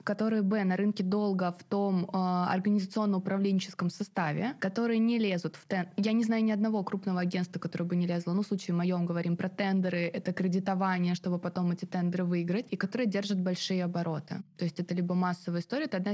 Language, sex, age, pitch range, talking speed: Russian, female, 20-39, 175-205 Hz, 205 wpm